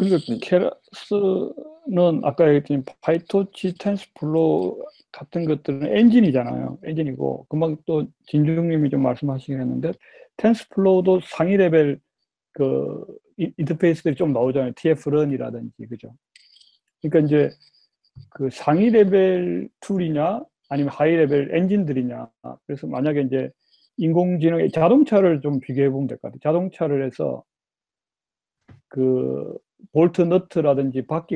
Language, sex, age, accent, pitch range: Korean, male, 40-59, native, 135-175 Hz